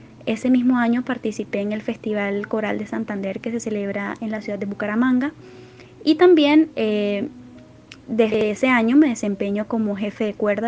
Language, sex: Spanish, female